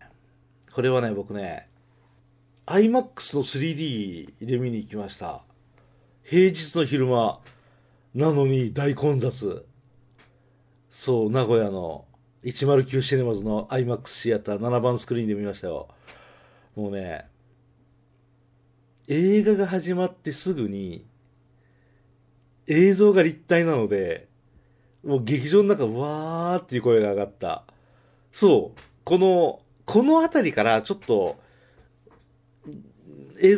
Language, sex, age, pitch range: Japanese, male, 50-69, 120-175 Hz